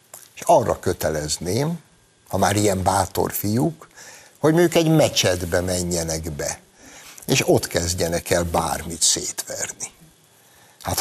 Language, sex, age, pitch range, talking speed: Hungarian, male, 60-79, 90-115 Hz, 110 wpm